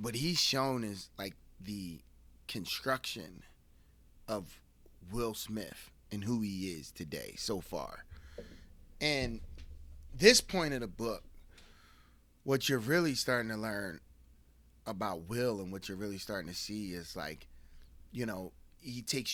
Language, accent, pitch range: English, American, 90-120 Hz